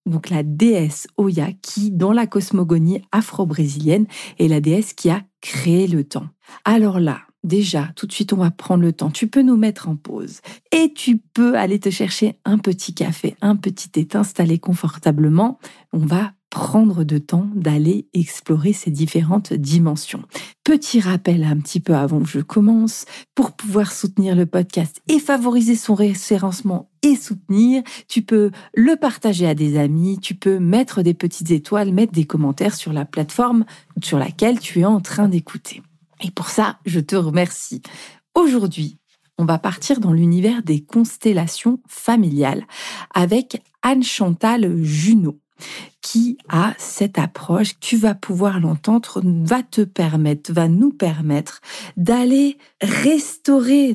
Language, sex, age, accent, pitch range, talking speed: French, female, 40-59, French, 165-220 Hz, 155 wpm